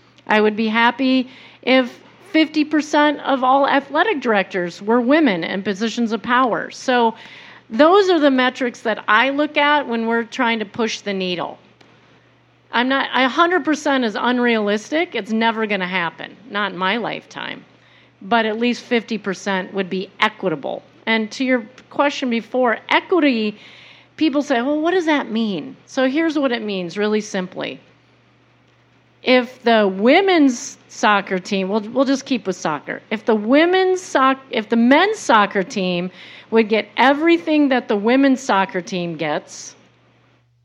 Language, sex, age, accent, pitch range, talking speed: English, female, 40-59, American, 205-275 Hz, 150 wpm